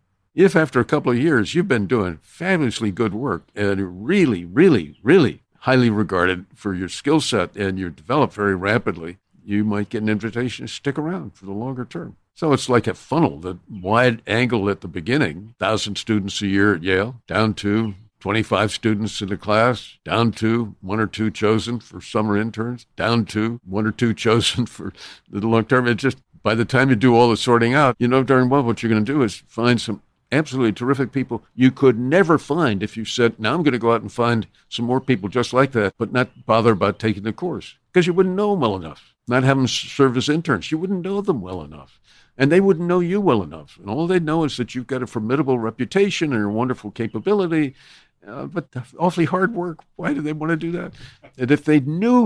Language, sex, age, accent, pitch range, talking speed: English, male, 60-79, American, 105-145 Hz, 220 wpm